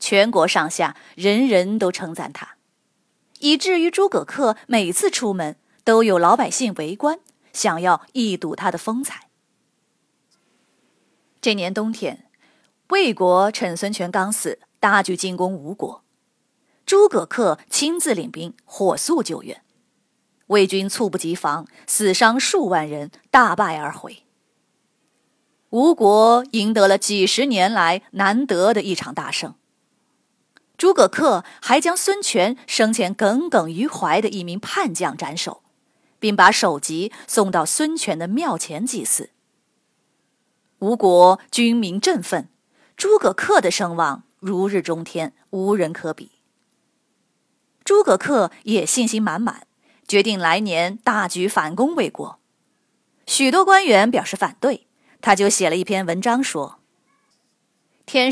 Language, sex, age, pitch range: Chinese, female, 20-39, 185-255 Hz